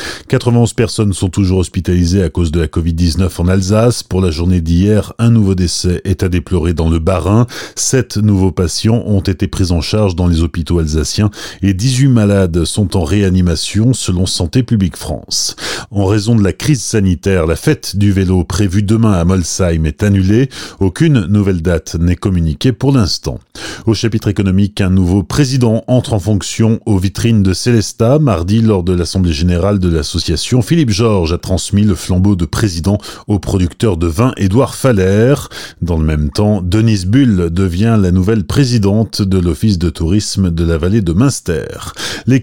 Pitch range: 95-115 Hz